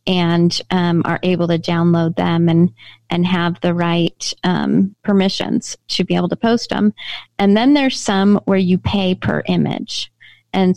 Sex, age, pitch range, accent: female, 30-49, 180-210 Hz, American